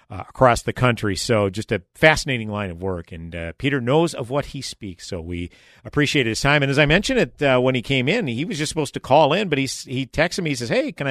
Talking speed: 270 wpm